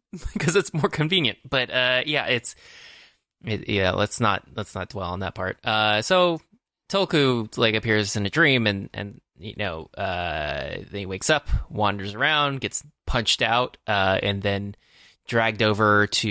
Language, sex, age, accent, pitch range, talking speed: English, male, 20-39, American, 100-120 Hz, 165 wpm